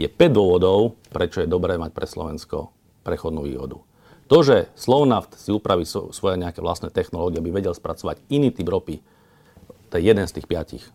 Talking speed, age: 175 wpm, 50-69